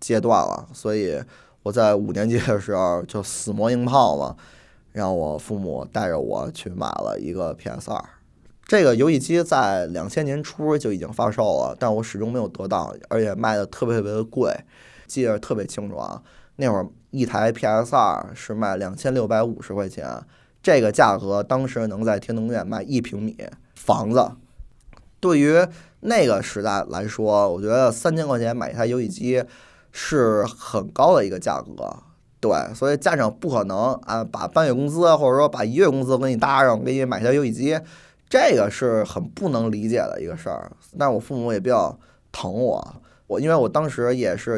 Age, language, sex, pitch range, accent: 20-39, Chinese, male, 105-130 Hz, native